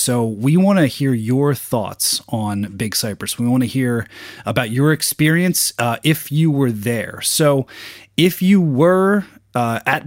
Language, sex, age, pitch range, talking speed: English, male, 30-49, 110-140 Hz, 165 wpm